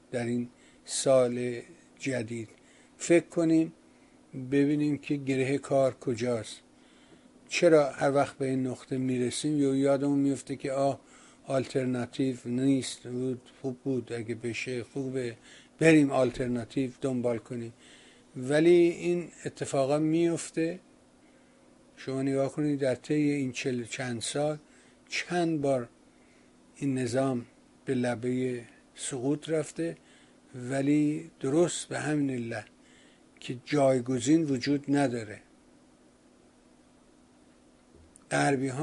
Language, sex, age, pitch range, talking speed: Persian, male, 50-69, 125-150 Hz, 100 wpm